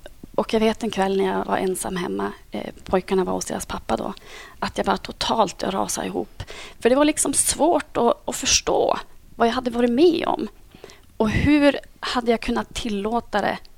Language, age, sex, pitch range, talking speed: Swedish, 30-49, female, 210-260 Hz, 185 wpm